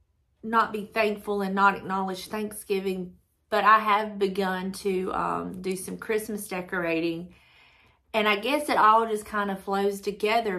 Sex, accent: female, American